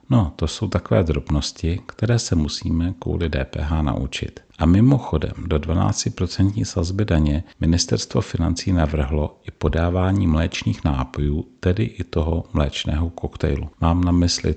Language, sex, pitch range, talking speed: Czech, male, 75-95 Hz, 130 wpm